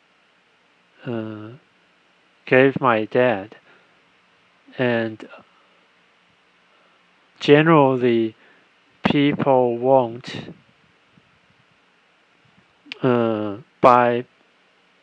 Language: Chinese